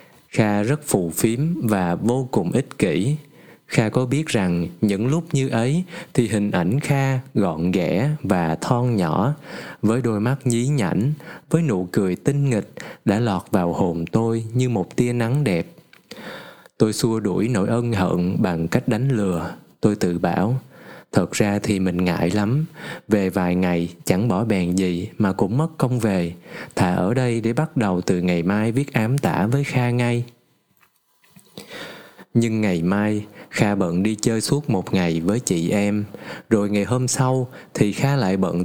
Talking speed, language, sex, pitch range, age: 175 wpm, Vietnamese, male, 100-130 Hz, 20-39